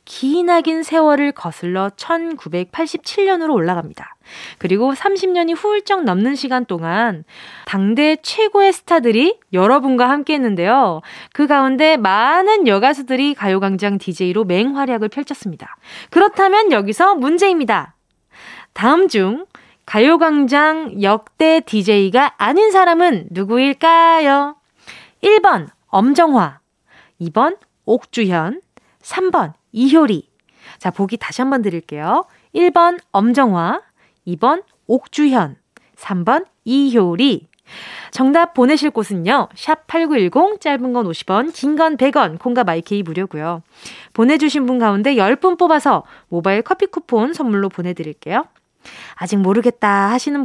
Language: Korean